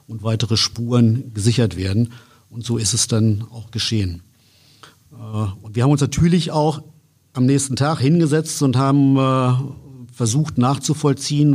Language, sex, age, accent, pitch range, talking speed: German, male, 50-69, German, 115-135 Hz, 135 wpm